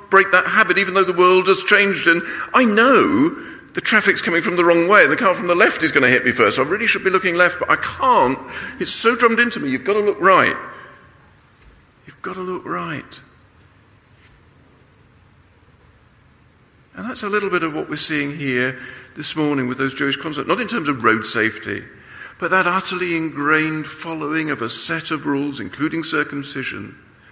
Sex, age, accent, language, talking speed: male, 50-69, British, English, 200 wpm